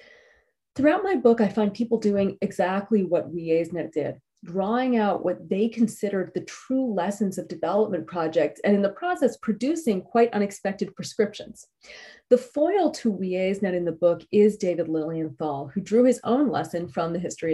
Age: 30-49